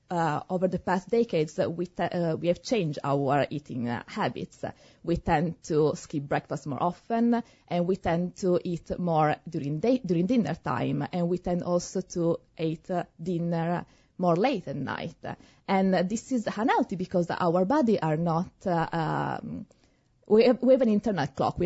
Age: 20-39